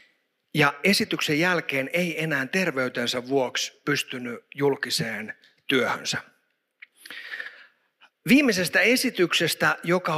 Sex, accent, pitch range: male, native, 135-205 Hz